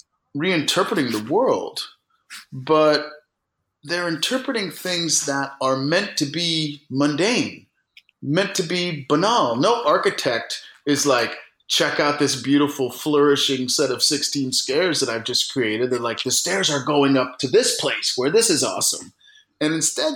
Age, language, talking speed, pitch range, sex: 30-49, English, 150 wpm, 140-185 Hz, male